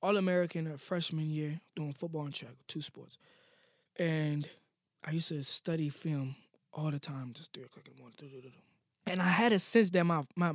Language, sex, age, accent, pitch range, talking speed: English, male, 20-39, American, 150-180 Hz, 180 wpm